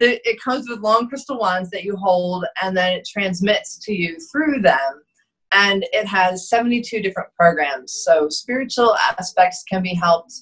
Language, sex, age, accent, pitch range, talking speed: English, female, 30-49, American, 165-215 Hz, 165 wpm